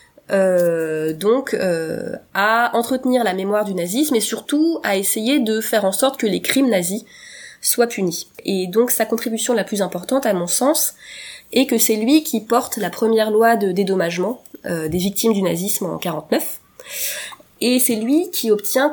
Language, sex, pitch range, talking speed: English, female, 195-245 Hz, 180 wpm